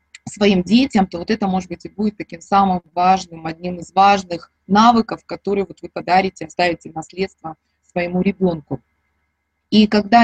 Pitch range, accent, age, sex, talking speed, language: 170-210 Hz, native, 20-39, female, 150 wpm, Russian